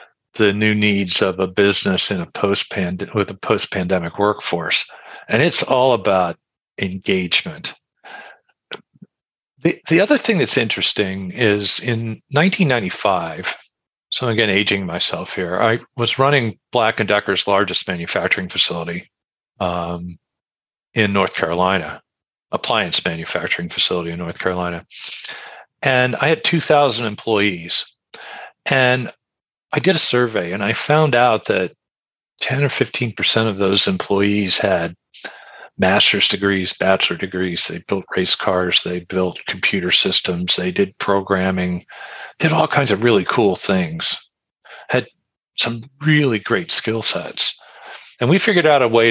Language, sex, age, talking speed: English, male, 40-59, 130 wpm